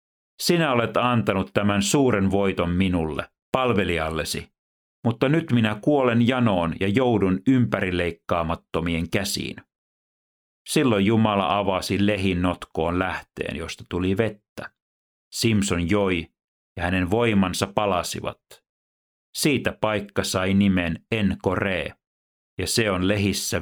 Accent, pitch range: native, 85-105 Hz